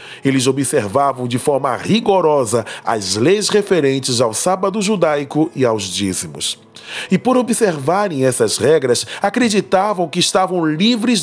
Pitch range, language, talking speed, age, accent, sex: 135-210 Hz, Portuguese, 125 wpm, 20-39, Brazilian, male